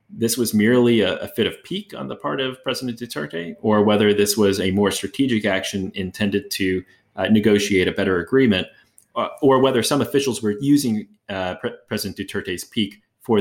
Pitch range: 90-110 Hz